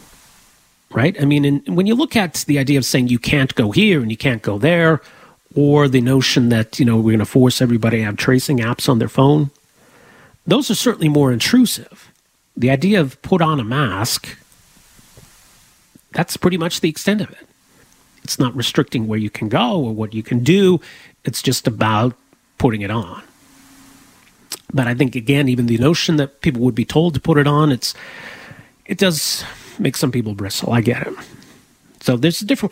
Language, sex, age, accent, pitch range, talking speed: English, male, 40-59, American, 125-165 Hz, 195 wpm